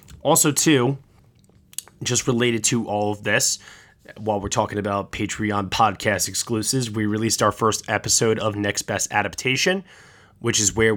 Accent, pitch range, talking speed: American, 105-120 Hz, 150 wpm